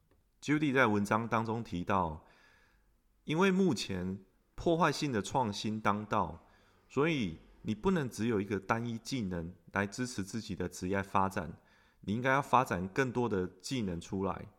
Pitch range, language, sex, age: 95-130 Hz, Chinese, male, 30-49